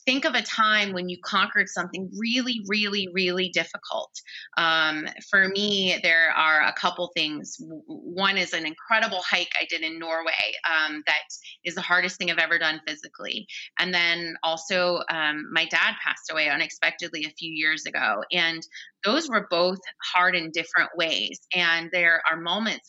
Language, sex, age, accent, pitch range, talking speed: English, female, 30-49, American, 160-190 Hz, 170 wpm